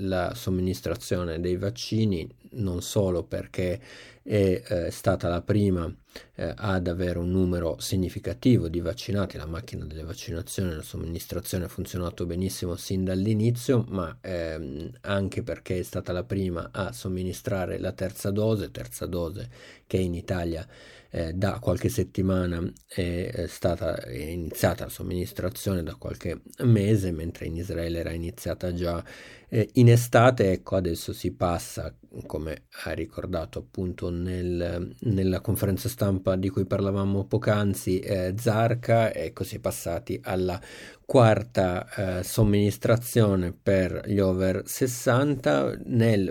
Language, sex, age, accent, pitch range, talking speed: Italian, male, 50-69, native, 90-110 Hz, 125 wpm